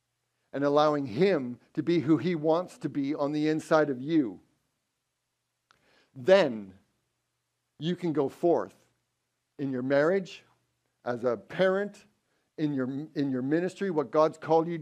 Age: 50-69